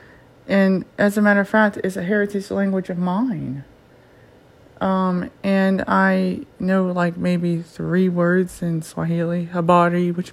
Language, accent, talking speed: English, American, 140 wpm